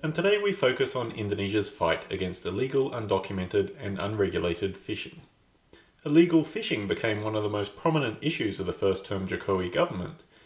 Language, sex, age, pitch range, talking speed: English, male, 30-49, 95-150 Hz, 155 wpm